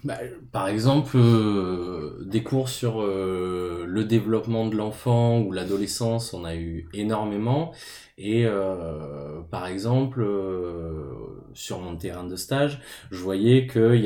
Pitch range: 95-120 Hz